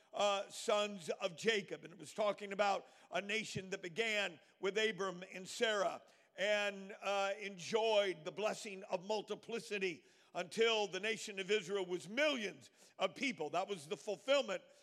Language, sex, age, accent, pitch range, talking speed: English, male, 50-69, American, 195-215 Hz, 145 wpm